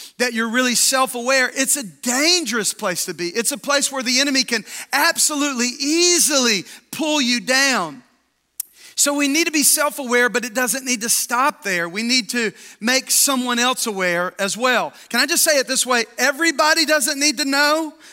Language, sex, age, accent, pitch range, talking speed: English, male, 40-59, American, 230-285 Hz, 185 wpm